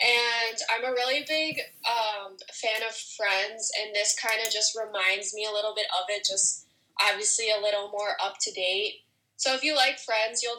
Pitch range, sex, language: 200-230 Hz, female, English